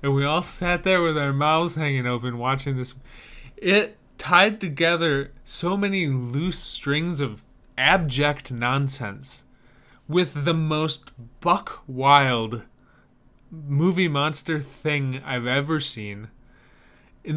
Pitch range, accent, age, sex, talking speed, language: 130-165 Hz, American, 20-39, male, 115 wpm, English